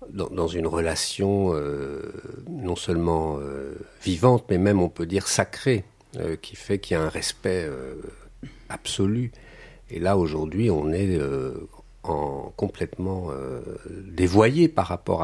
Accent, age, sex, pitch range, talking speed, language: French, 50-69, male, 80-105 Hz, 140 wpm, French